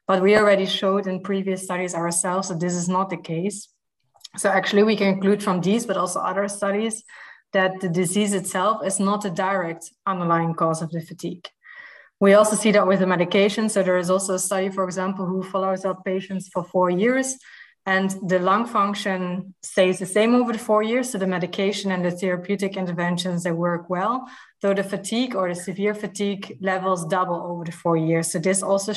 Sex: female